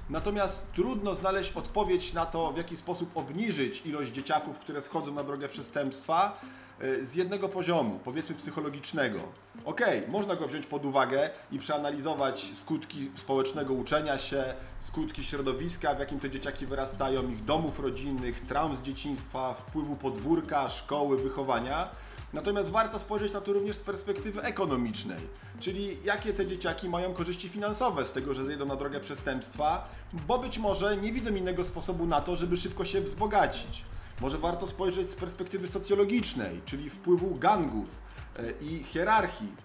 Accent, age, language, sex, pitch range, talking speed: native, 40-59, Polish, male, 140-185 Hz, 150 wpm